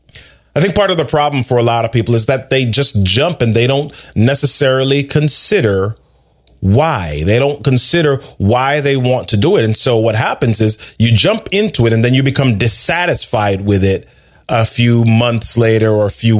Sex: male